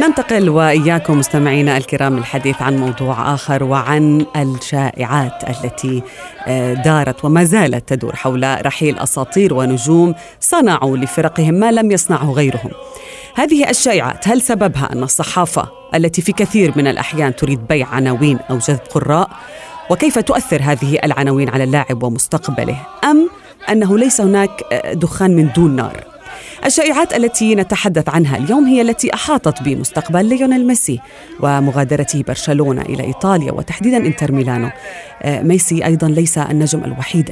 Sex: female